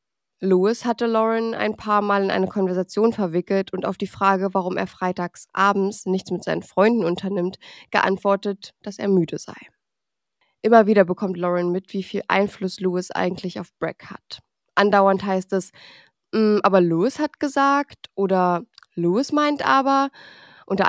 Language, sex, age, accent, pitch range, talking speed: German, female, 20-39, German, 185-215 Hz, 150 wpm